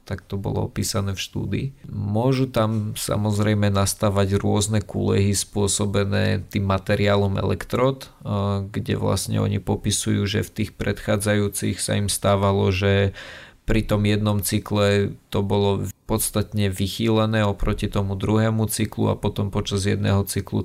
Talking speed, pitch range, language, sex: 130 wpm, 100-110 Hz, Slovak, male